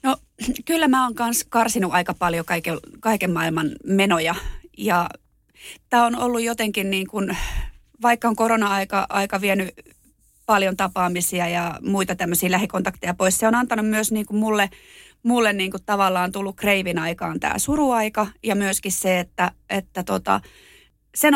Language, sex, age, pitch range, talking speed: Finnish, female, 30-49, 195-240 Hz, 145 wpm